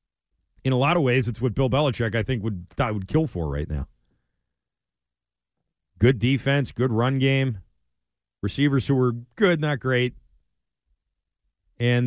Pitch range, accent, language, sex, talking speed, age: 90-130 Hz, American, English, male, 145 wpm, 30-49